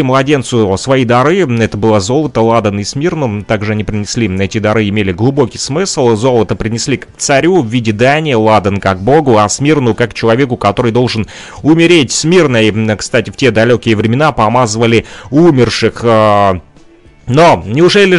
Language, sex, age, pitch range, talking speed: Russian, male, 30-49, 105-135 Hz, 150 wpm